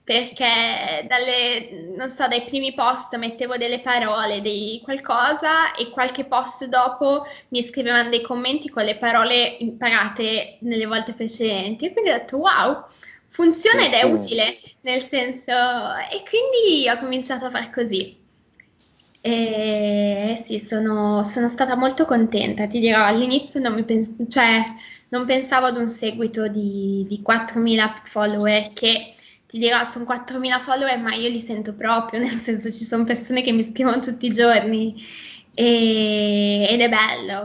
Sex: female